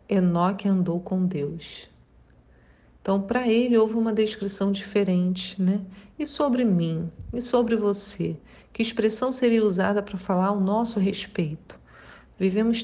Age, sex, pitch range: 40-59, female, 195-230 Hz